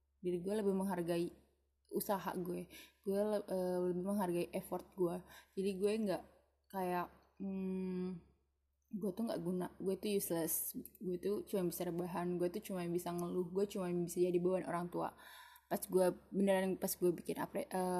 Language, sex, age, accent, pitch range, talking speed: Indonesian, female, 20-39, native, 175-200 Hz, 155 wpm